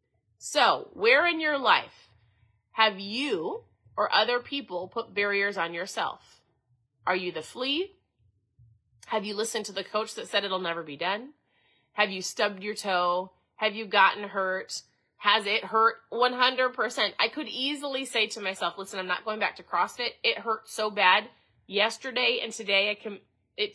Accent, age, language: American, 30-49, English